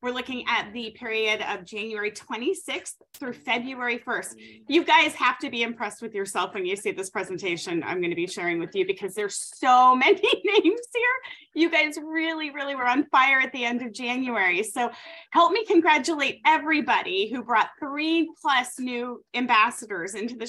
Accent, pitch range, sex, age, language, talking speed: American, 230-300 Hz, female, 30-49, English, 180 wpm